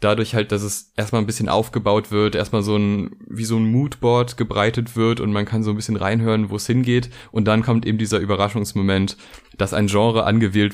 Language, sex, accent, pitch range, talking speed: German, male, German, 105-120 Hz, 210 wpm